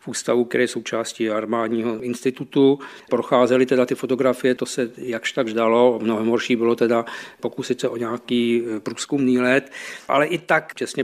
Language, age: Czech, 50-69